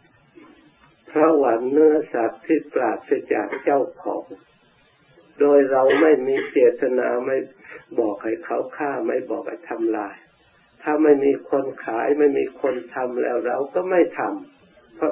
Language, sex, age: Thai, male, 60-79